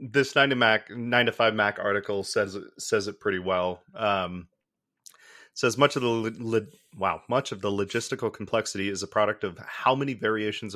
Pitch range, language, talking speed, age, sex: 100-125 Hz, English, 190 wpm, 30-49, male